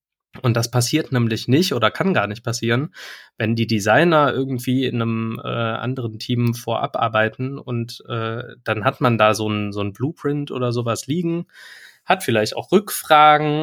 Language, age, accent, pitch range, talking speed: German, 20-39, German, 115-145 Hz, 165 wpm